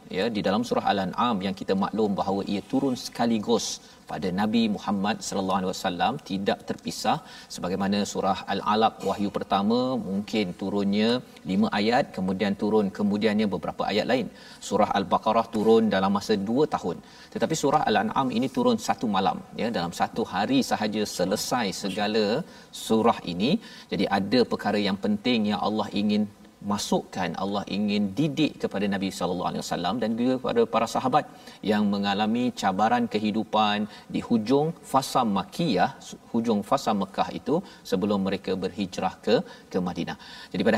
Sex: male